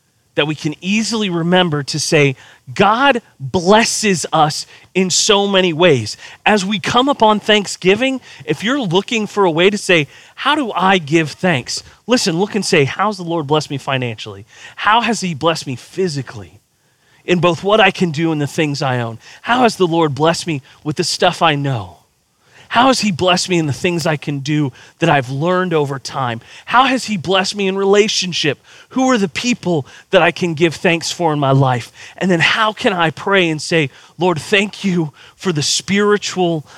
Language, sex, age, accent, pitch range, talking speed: English, male, 30-49, American, 145-200 Hz, 195 wpm